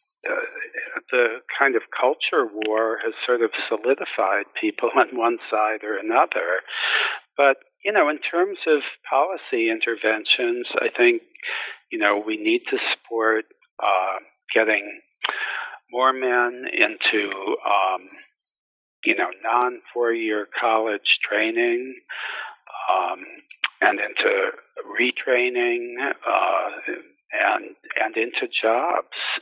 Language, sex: English, male